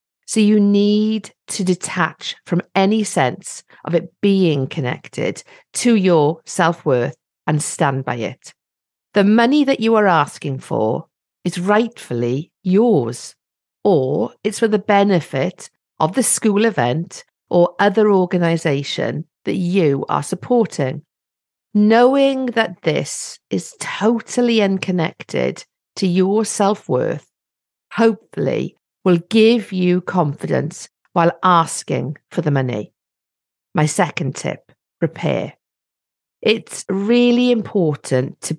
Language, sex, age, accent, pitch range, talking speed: English, female, 50-69, British, 150-210 Hz, 115 wpm